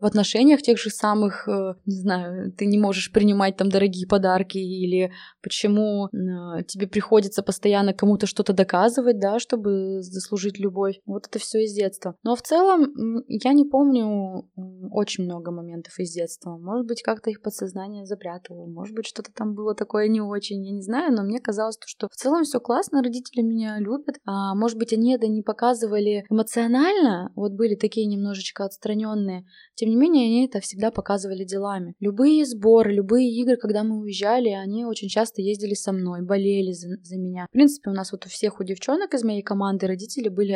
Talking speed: 180 wpm